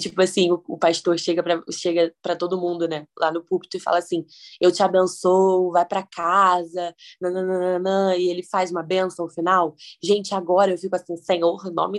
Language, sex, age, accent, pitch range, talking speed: Portuguese, female, 20-39, Brazilian, 180-210 Hz, 195 wpm